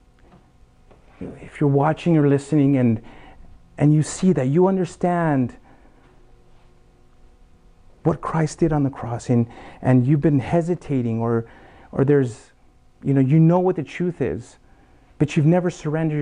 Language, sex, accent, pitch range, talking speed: English, male, American, 120-165 Hz, 140 wpm